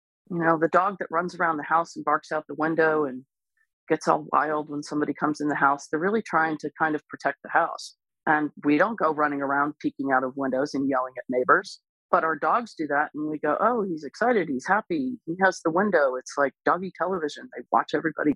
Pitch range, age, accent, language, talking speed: 140-165 Hz, 40-59, American, English, 230 wpm